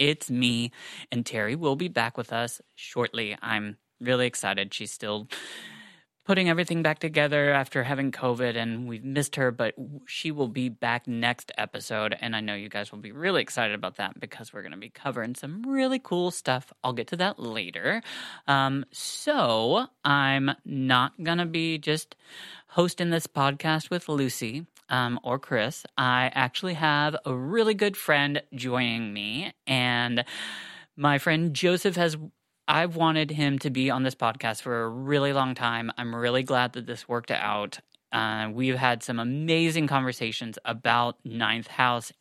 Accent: American